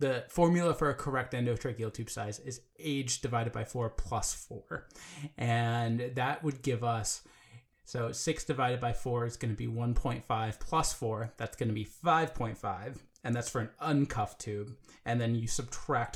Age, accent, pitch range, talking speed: 20-39, American, 115-140 Hz, 175 wpm